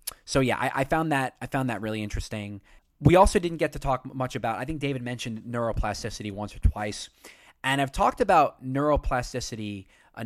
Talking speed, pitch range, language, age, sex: 205 wpm, 105-140 Hz, English, 20-39, male